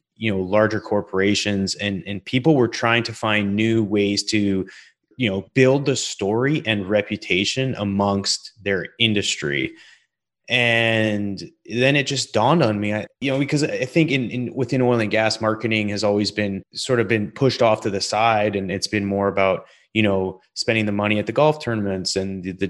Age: 30-49